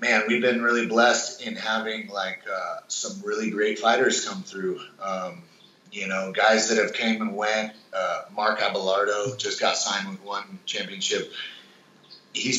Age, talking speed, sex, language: 30-49, 160 wpm, male, English